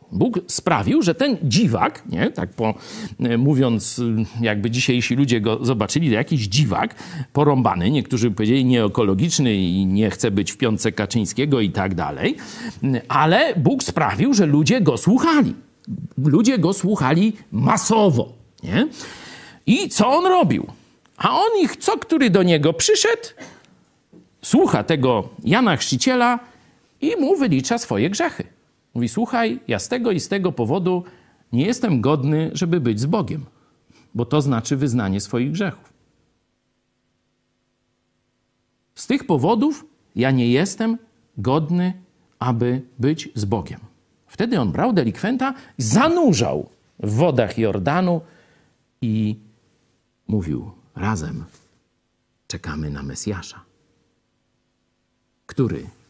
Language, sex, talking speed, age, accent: Polish, male, 120 wpm, 50-69, native